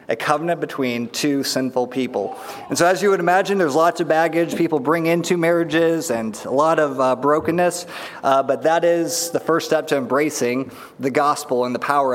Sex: male